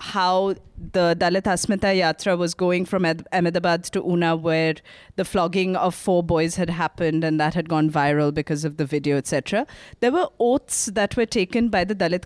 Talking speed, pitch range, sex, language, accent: 190 wpm, 165-205 Hz, female, English, Indian